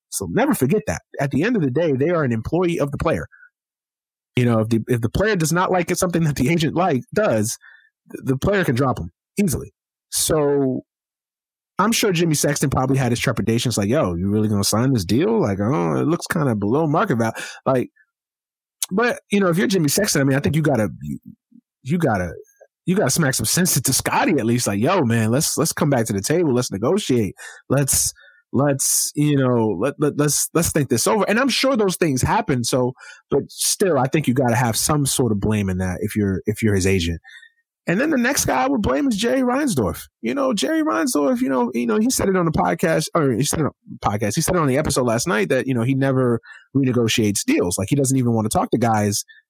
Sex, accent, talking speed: male, American, 240 wpm